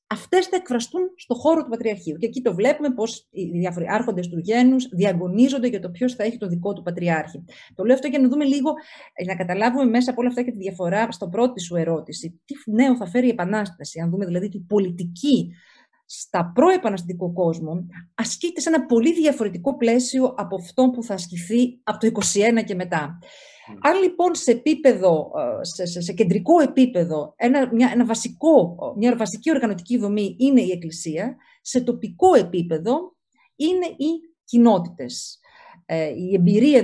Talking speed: 175 wpm